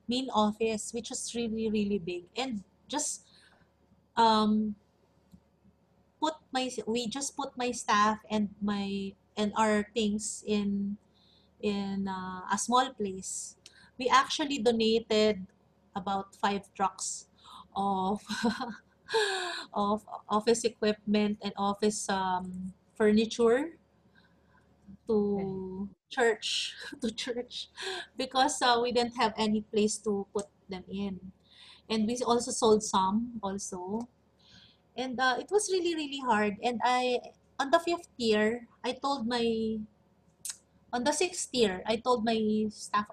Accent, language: Filipino, English